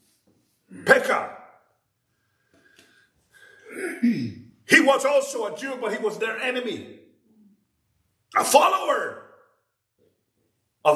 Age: 50-69